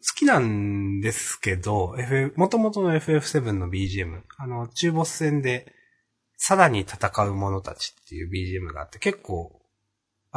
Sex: male